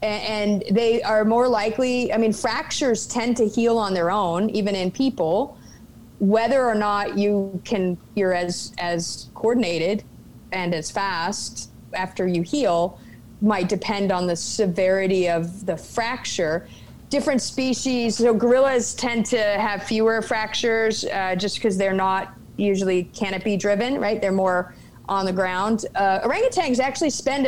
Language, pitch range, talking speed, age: English, 185-230 Hz, 145 wpm, 30-49